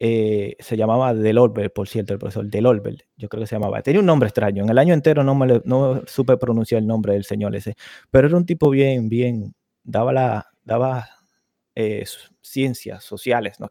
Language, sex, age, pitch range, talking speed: Spanish, male, 20-39, 115-155 Hz, 195 wpm